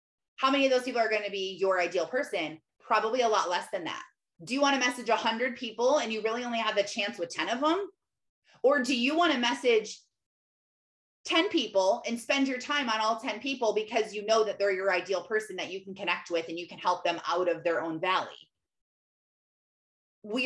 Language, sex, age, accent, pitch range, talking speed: English, female, 30-49, American, 195-260 Hz, 225 wpm